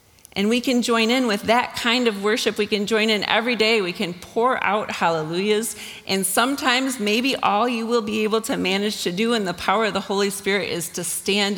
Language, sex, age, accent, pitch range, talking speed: English, female, 40-59, American, 150-215 Hz, 225 wpm